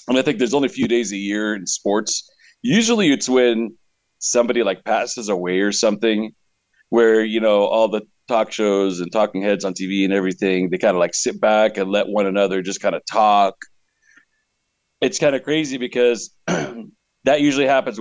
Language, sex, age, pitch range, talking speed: English, male, 40-59, 95-115 Hz, 190 wpm